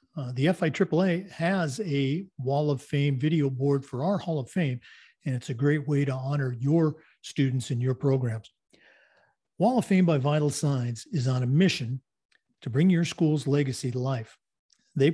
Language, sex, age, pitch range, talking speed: English, male, 50-69, 130-165 Hz, 180 wpm